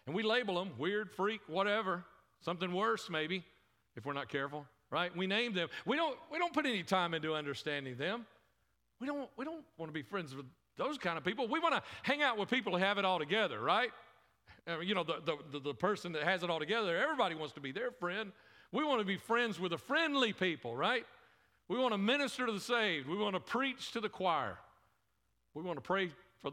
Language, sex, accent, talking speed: English, male, American, 220 wpm